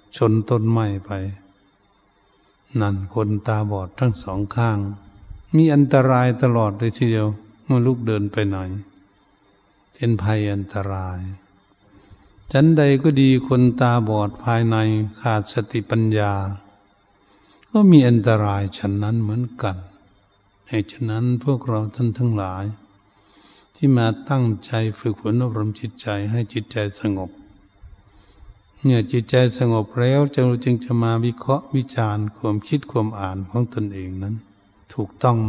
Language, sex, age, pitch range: Thai, male, 70-89, 100-120 Hz